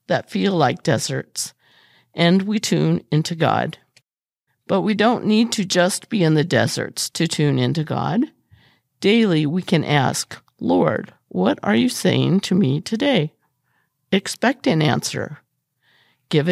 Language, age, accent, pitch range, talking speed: English, 50-69, American, 150-205 Hz, 140 wpm